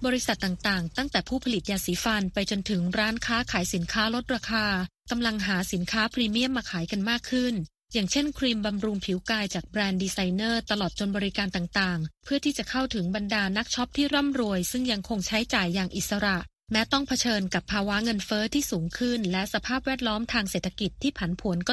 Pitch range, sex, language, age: 195-235 Hz, female, Thai, 20-39